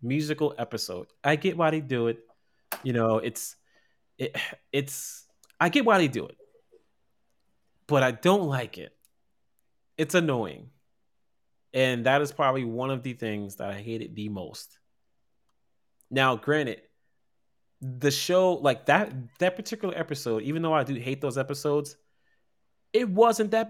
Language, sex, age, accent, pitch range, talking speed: English, male, 20-39, American, 115-150 Hz, 150 wpm